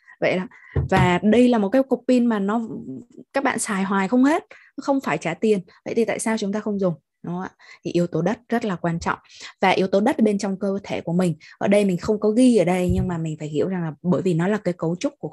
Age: 20-39